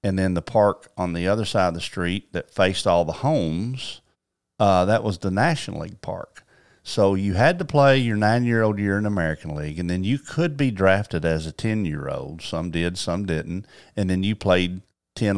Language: English